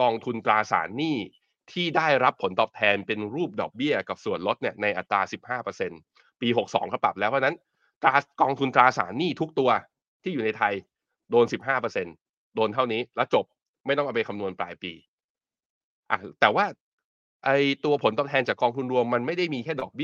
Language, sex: Thai, male